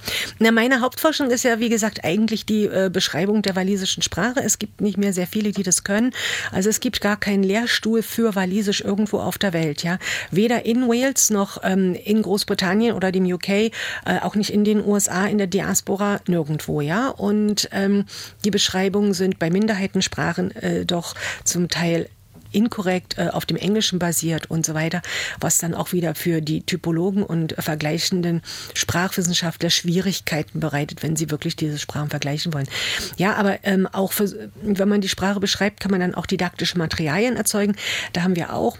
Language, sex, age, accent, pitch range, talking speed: German, female, 50-69, German, 170-205 Hz, 180 wpm